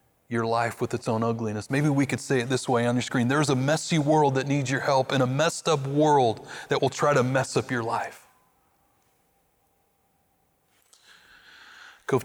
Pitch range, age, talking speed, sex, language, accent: 120-145 Hz, 30-49, 185 wpm, male, English, American